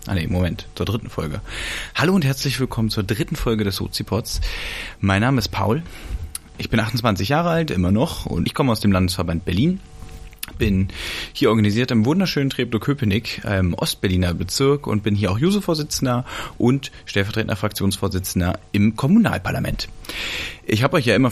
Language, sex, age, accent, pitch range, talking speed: German, male, 30-49, German, 90-115 Hz, 165 wpm